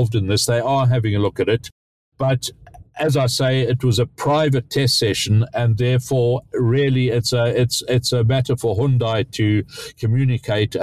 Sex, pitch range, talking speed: male, 115-140 Hz, 175 wpm